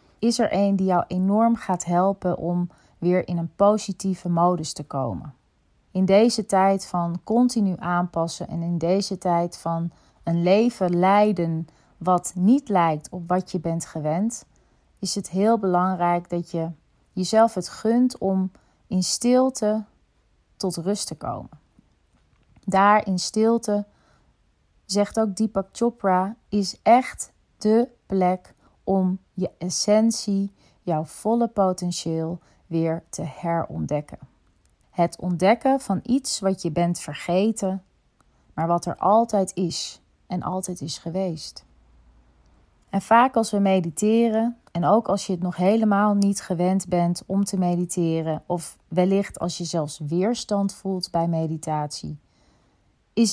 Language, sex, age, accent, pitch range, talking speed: Dutch, female, 30-49, Dutch, 170-205 Hz, 135 wpm